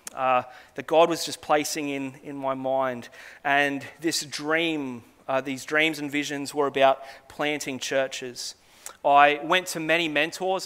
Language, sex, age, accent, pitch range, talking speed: English, male, 30-49, Australian, 140-165 Hz, 150 wpm